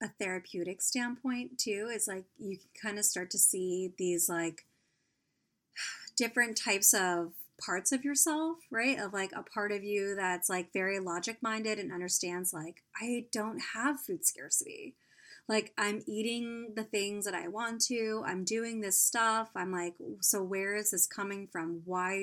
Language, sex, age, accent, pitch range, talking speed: English, female, 30-49, American, 180-230 Hz, 170 wpm